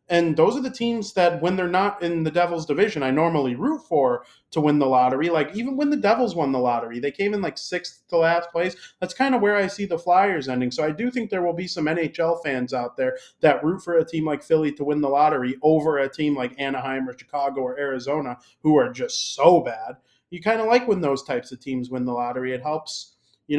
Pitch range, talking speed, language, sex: 135-180 Hz, 250 wpm, English, male